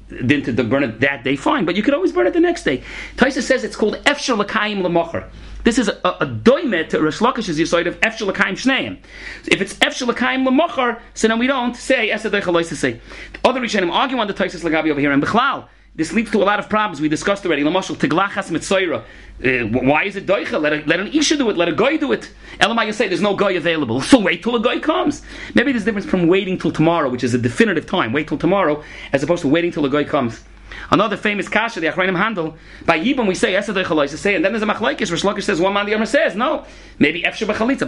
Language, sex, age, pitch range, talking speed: English, male, 40-59, 165-235 Hz, 230 wpm